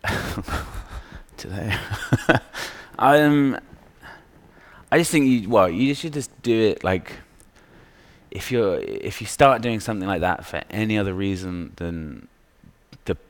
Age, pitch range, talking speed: 20-39, 85-105 Hz, 130 wpm